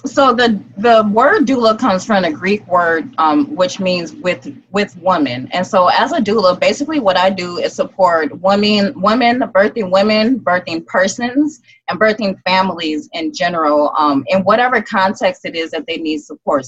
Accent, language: American, English